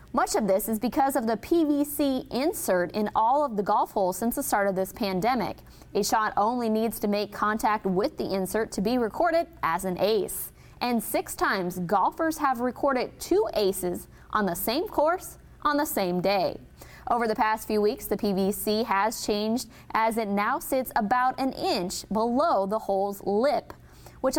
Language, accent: English, American